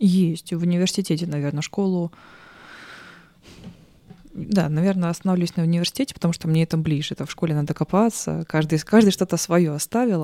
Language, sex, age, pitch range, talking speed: Russian, female, 20-39, 160-195 Hz, 145 wpm